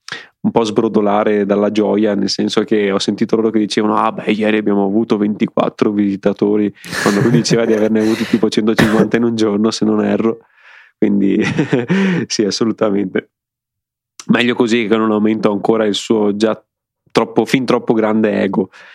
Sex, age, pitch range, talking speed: male, 20-39, 105-120 Hz, 160 wpm